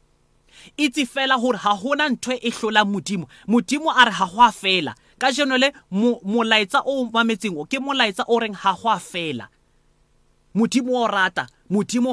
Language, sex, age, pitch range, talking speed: English, male, 30-49, 190-245 Hz, 145 wpm